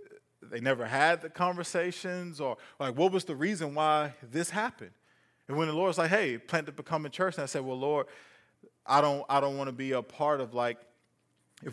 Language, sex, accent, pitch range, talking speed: English, male, American, 140-185 Hz, 220 wpm